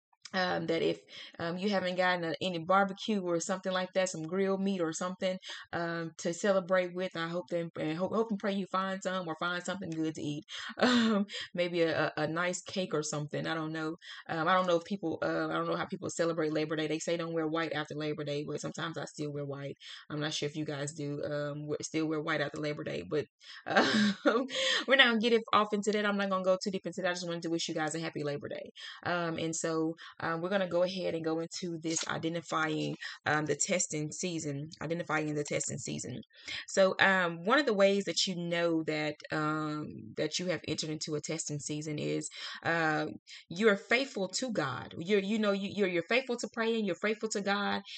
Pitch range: 160-200 Hz